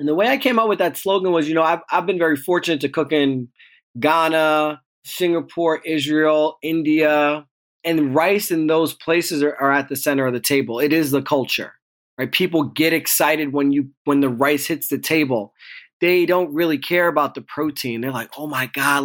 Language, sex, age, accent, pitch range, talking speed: English, male, 20-39, American, 145-175 Hz, 200 wpm